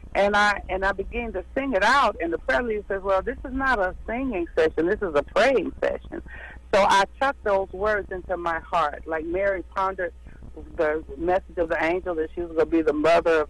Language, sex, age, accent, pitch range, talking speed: English, female, 60-79, American, 165-245 Hz, 220 wpm